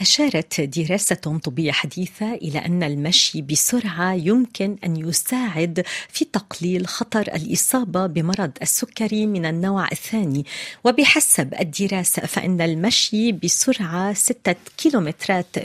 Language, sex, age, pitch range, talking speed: Arabic, female, 40-59, 180-235 Hz, 105 wpm